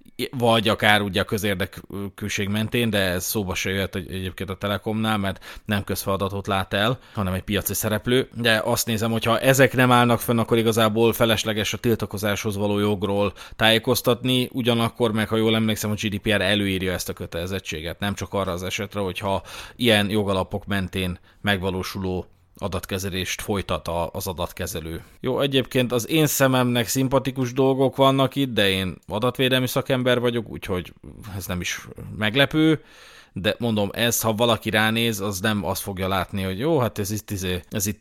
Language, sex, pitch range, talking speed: Hungarian, male, 100-120 Hz, 160 wpm